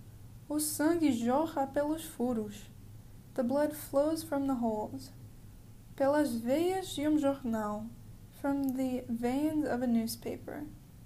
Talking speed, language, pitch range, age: 120 wpm, Portuguese, 230-280 Hz, 10-29